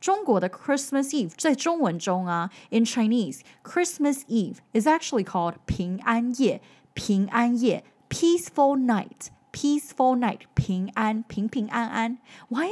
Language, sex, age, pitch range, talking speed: English, female, 10-29, 195-270 Hz, 80 wpm